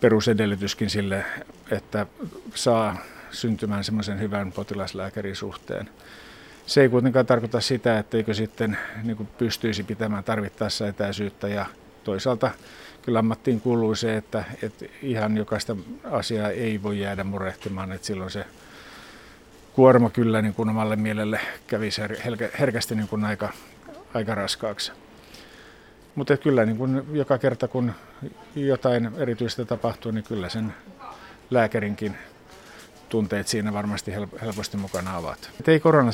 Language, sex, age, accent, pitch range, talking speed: Finnish, male, 50-69, native, 105-120 Hz, 110 wpm